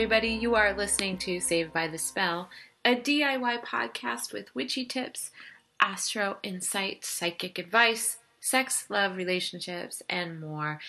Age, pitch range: 30-49, 160-220 Hz